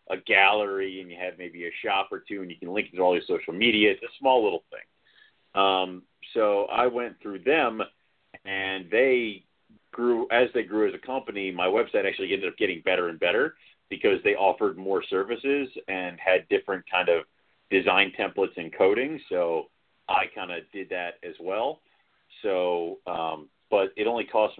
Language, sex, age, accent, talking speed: English, male, 40-59, American, 190 wpm